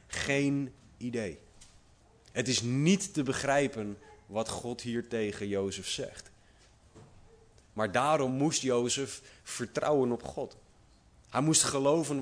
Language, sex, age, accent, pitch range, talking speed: Dutch, male, 30-49, Dutch, 110-140 Hz, 115 wpm